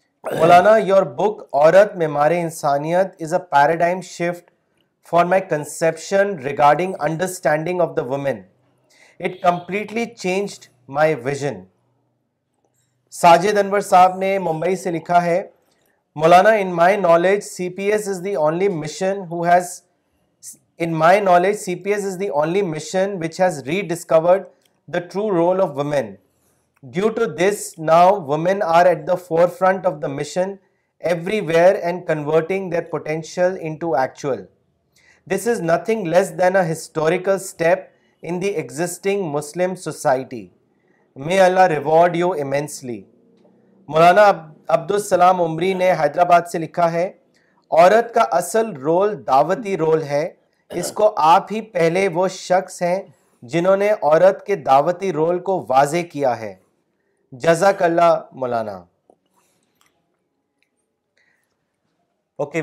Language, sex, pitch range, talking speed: Urdu, male, 160-190 Hz, 125 wpm